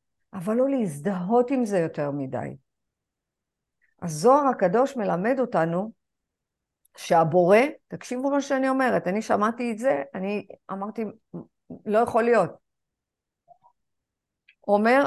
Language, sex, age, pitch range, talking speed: Hebrew, female, 50-69, 190-255 Hz, 110 wpm